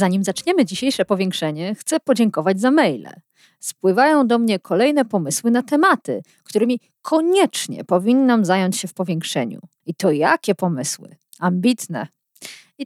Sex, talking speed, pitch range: female, 130 wpm, 195-295 Hz